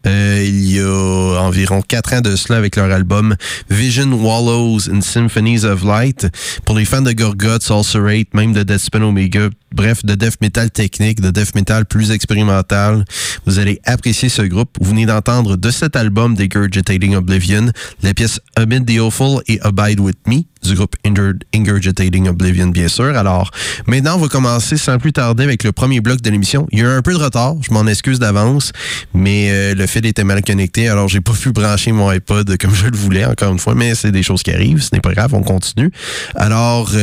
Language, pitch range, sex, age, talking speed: French, 100-125 Hz, male, 30-49, 205 wpm